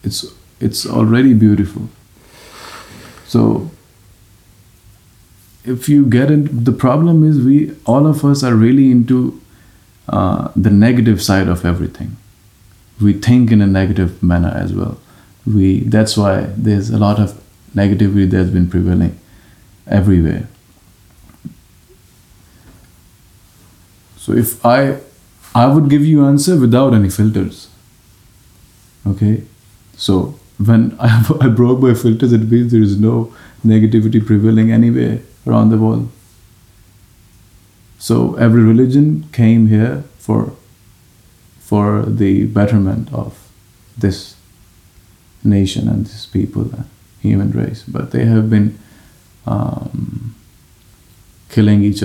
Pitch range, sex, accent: 100-115 Hz, male, Indian